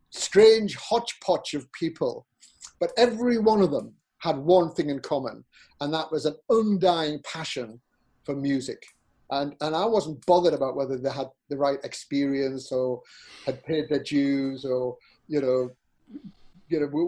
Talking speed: 160 wpm